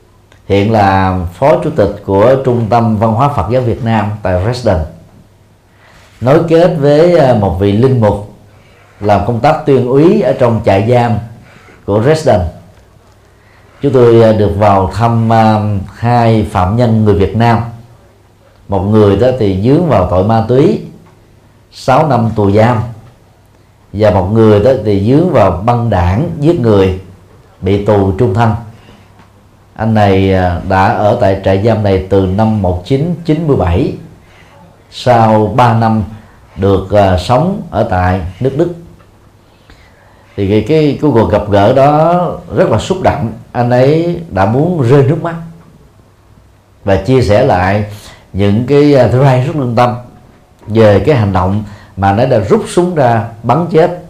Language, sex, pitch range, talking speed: Vietnamese, male, 100-125 Hz, 150 wpm